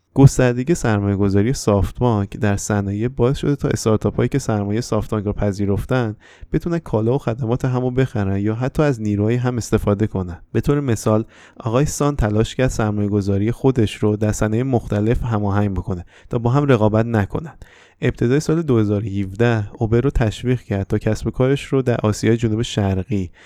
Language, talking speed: Persian, 165 wpm